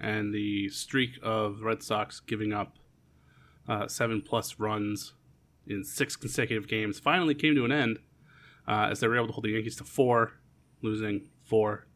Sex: male